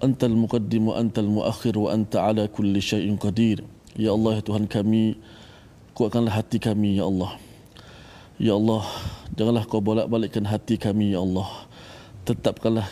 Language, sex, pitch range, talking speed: Malayalam, male, 105-115 Hz, 135 wpm